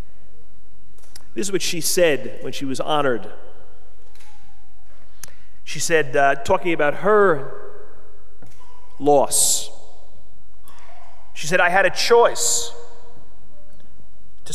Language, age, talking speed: English, 30-49, 95 wpm